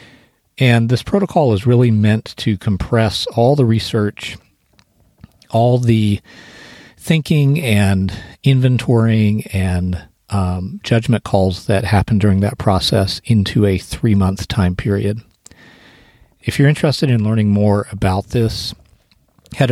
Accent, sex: American, male